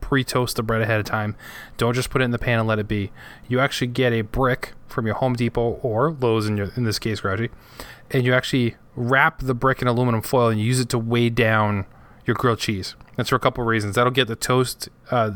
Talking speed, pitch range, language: 240 wpm, 110-130 Hz, English